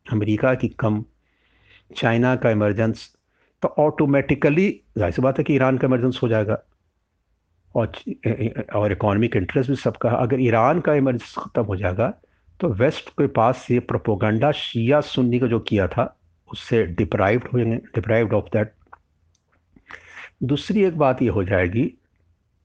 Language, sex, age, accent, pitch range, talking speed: Hindi, male, 60-79, native, 100-135 Hz, 150 wpm